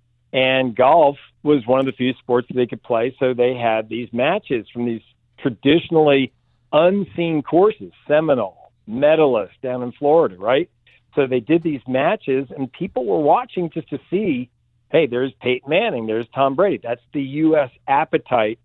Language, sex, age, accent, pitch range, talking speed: English, male, 50-69, American, 120-150 Hz, 165 wpm